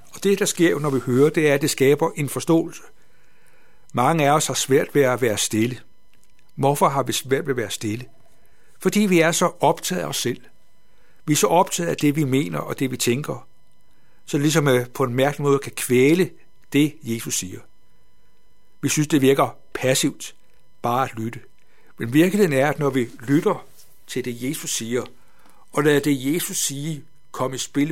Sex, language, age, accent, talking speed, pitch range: male, Danish, 60-79, native, 195 wpm, 130-165 Hz